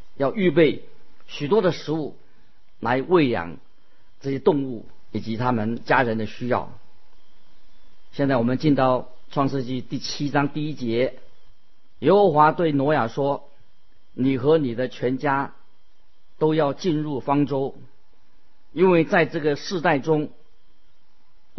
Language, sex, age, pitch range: Chinese, male, 50-69, 120-155 Hz